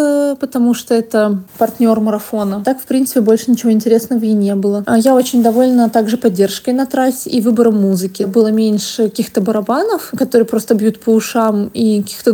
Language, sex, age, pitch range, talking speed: Russian, female, 20-39, 215-245 Hz, 170 wpm